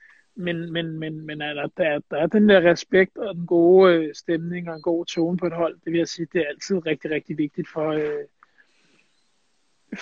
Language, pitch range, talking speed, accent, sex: Danish, 165-195 Hz, 215 wpm, native, male